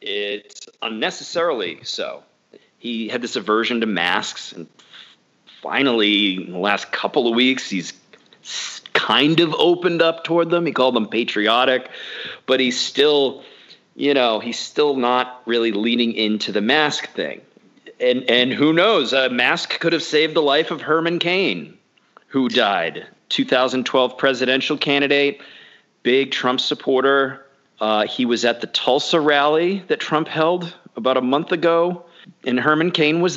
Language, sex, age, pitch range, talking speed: English, male, 40-59, 120-165 Hz, 145 wpm